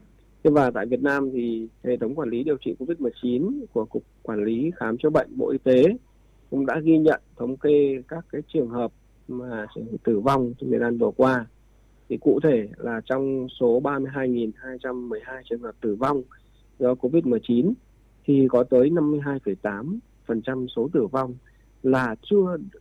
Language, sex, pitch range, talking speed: Vietnamese, male, 115-135 Hz, 165 wpm